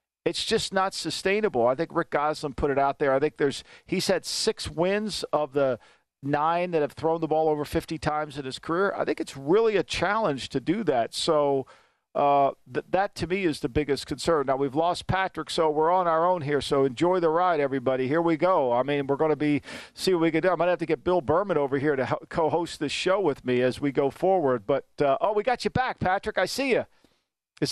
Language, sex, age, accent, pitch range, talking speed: English, male, 50-69, American, 145-185 Hz, 240 wpm